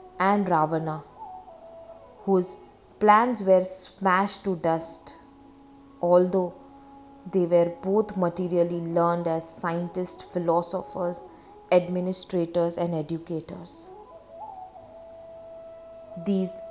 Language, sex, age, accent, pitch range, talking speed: English, female, 20-39, Indian, 170-275 Hz, 75 wpm